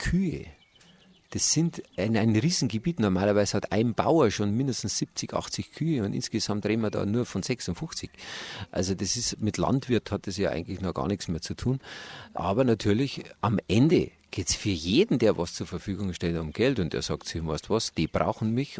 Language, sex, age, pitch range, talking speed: German, male, 50-69, 95-120 Hz, 200 wpm